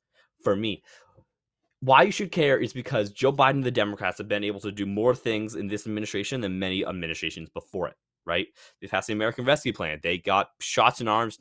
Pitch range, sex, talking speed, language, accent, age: 105-140 Hz, male, 210 wpm, English, American, 10-29